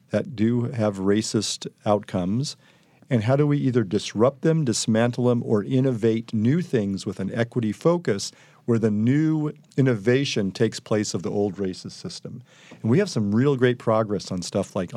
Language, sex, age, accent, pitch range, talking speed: English, male, 40-59, American, 105-140 Hz, 170 wpm